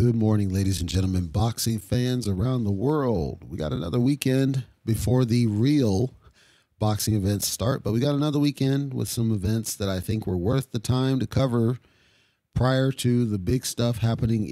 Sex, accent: male, American